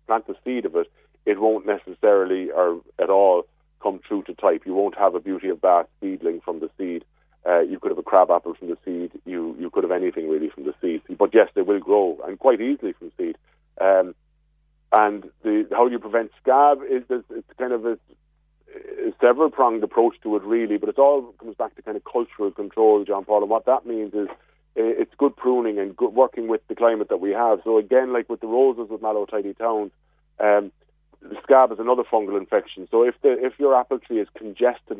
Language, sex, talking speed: English, male, 220 wpm